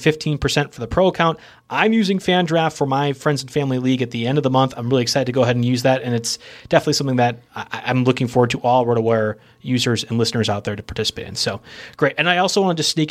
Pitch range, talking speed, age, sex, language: 125-165 Hz, 265 wpm, 30-49, male, English